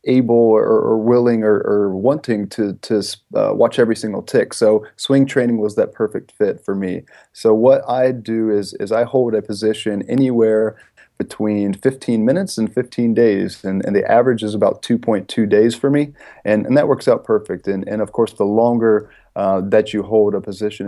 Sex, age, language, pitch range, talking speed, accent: male, 30-49, English, 105-125 Hz, 195 wpm, American